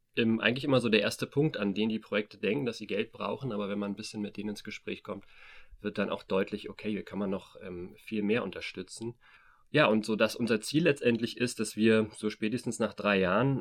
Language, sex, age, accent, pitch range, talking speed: German, male, 30-49, German, 105-115 Hz, 235 wpm